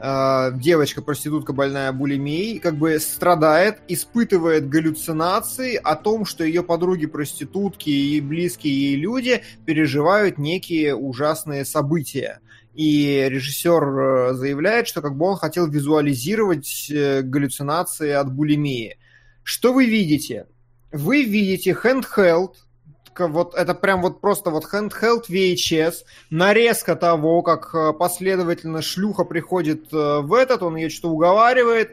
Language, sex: Russian, male